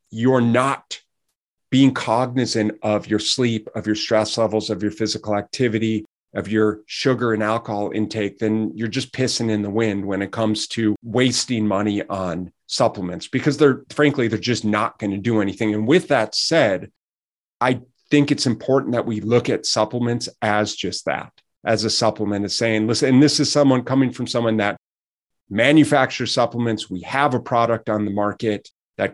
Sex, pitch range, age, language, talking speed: male, 105-125 Hz, 30-49, English, 175 wpm